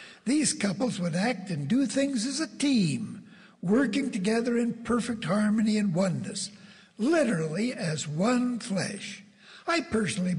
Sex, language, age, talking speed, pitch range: male, English, 60-79, 135 wpm, 180-230 Hz